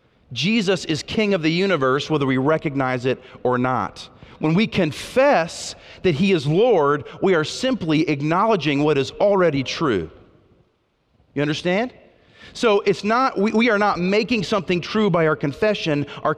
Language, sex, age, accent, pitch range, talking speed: English, male, 40-59, American, 145-195 Hz, 160 wpm